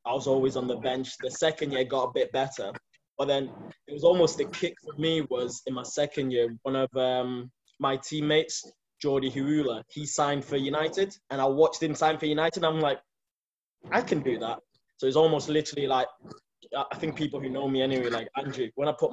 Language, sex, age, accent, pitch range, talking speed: English, male, 20-39, British, 130-150 Hz, 215 wpm